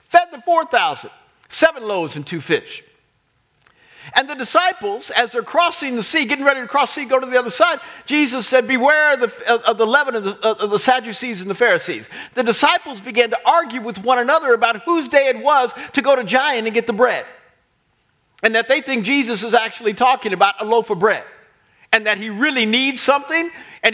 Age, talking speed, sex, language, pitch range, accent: 50-69, 210 wpm, male, English, 225-300 Hz, American